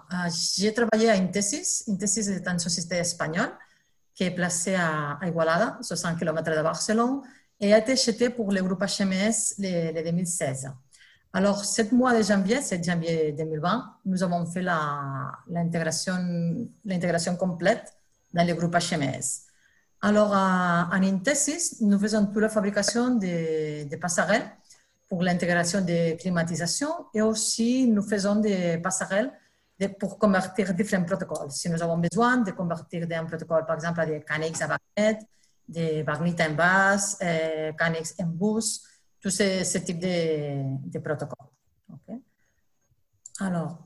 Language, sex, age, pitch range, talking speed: French, female, 40-59, 165-215 Hz, 140 wpm